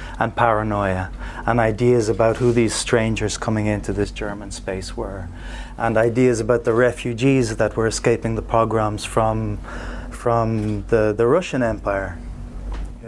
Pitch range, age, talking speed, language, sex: 110-130 Hz, 30-49, 140 wpm, English, male